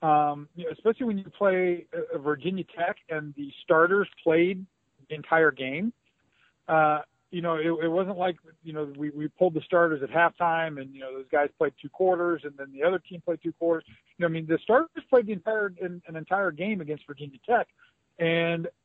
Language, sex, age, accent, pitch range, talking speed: English, male, 40-59, American, 155-200 Hz, 210 wpm